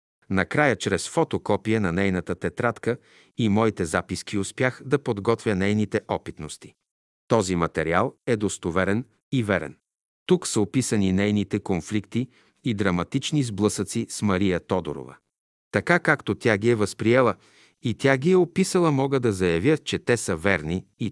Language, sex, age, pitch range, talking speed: Bulgarian, male, 50-69, 100-130 Hz, 140 wpm